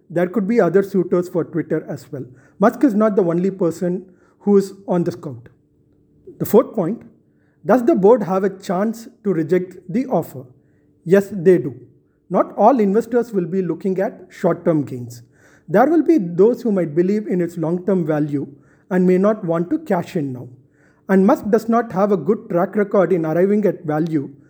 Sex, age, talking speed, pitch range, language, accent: male, 30-49, 195 wpm, 160-210 Hz, English, Indian